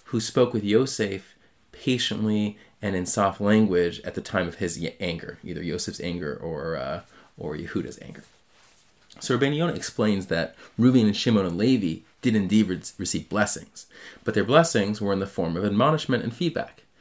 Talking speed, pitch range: 175 wpm, 95-115 Hz